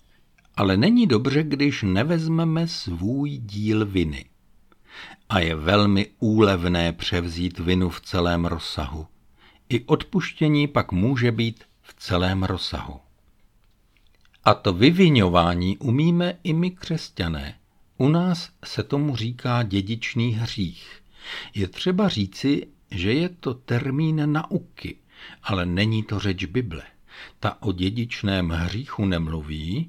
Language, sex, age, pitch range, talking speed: Czech, male, 60-79, 95-145 Hz, 115 wpm